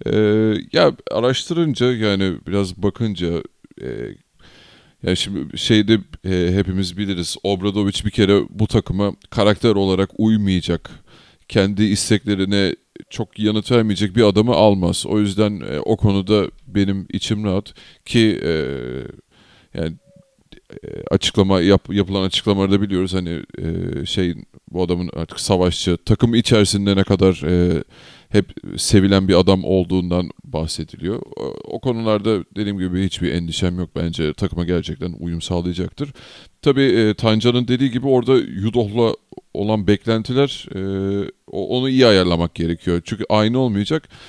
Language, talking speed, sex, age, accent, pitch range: Turkish, 125 wpm, male, 30-49, native, 90-110 Hz